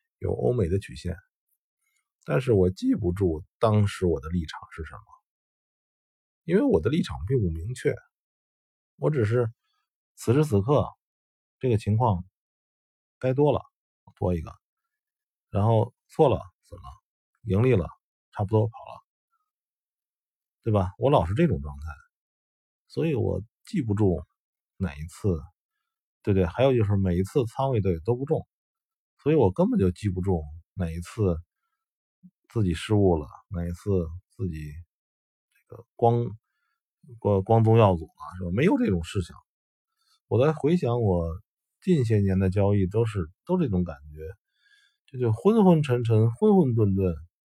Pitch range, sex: 90-150 Hz, male